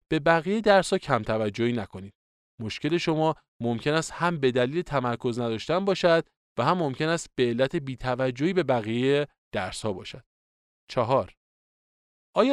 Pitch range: 115-175 Hz